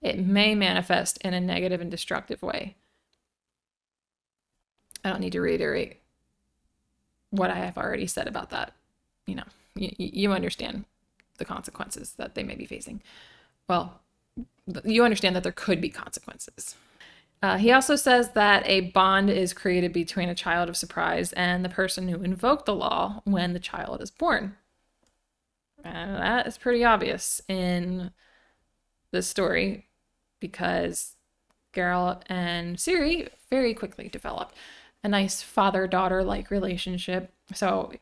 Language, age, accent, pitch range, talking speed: English, 20-39, American, 180-215 Hz, 135 wpm